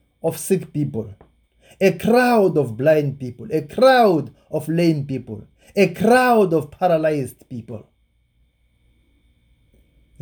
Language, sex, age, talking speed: English, male, 30-49, 105 wpm